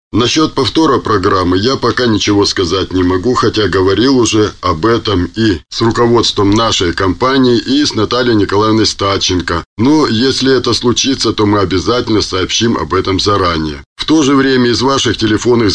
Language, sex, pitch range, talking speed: Russian, male, 95-120 Hz, 160 wpm